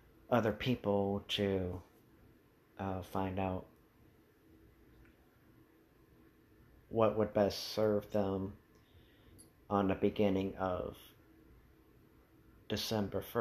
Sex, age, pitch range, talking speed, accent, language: male, 40-59, 95-110 Hz, 70 wpm, American, English